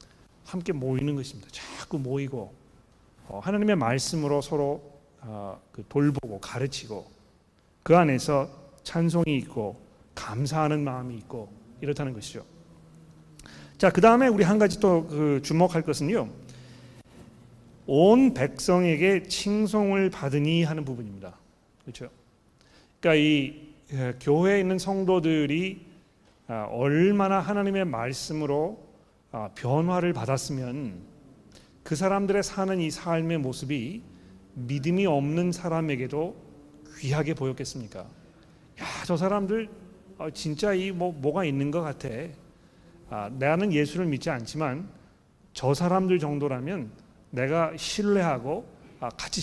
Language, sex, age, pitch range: Korean, male, 40-59, 130-175 Hz